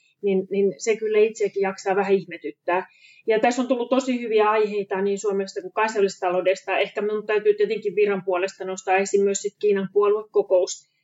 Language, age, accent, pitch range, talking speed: Finnish, 30-49, native, 190-225 Hz, 170 wpm